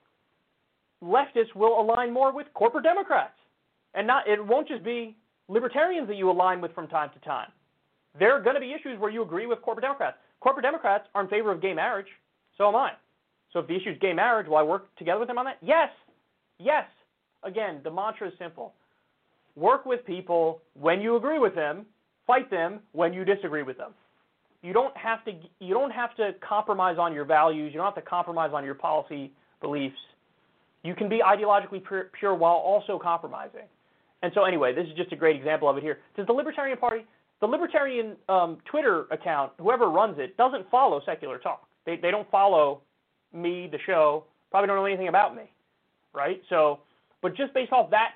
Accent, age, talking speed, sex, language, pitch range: American, 30-49, 200 wpm, male, English, 170-235 Hz